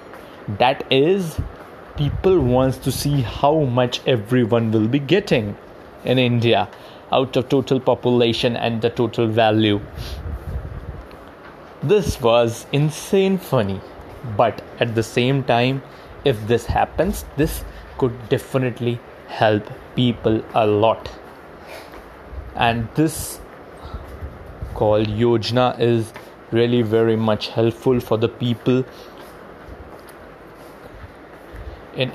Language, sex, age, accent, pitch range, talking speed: Hindi, male, 20-39, native, 110-130 Hz, 100 wpm